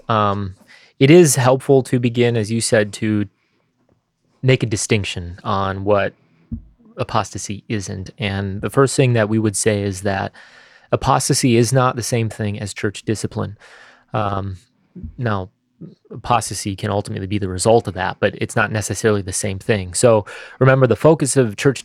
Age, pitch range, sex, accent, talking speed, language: 20-39, 100-120 Hz, male, American, 160 wpm, English